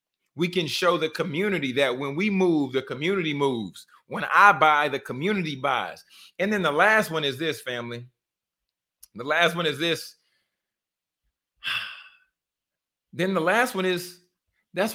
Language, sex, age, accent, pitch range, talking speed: English, male, 30-49, American, 140-185 Hz, 150 wpm